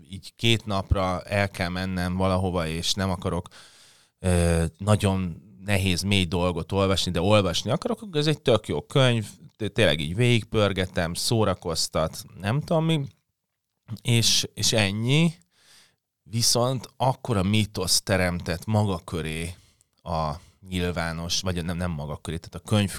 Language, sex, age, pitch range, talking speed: Hungarian, male, 30-49, 90-110 Hz, 135 wpm